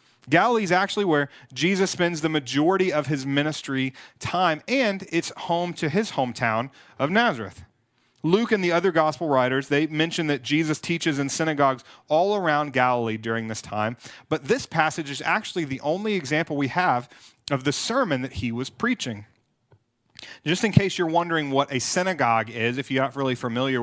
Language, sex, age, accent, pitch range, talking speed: English, male, 30-49, American, 130-165 Hz, 175 wpm